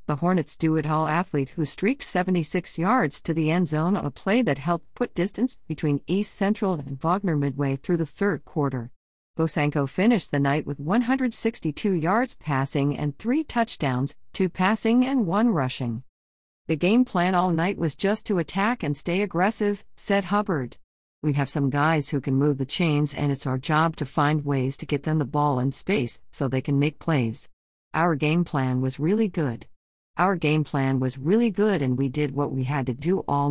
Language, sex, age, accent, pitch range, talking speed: English, female, 50-69, American, 140-185 Hz, 195 wpm